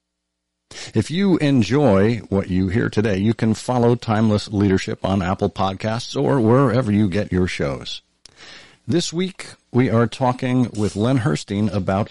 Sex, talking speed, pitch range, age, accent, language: male, 150 wpm, 90-125 Hz, 50-69, American, English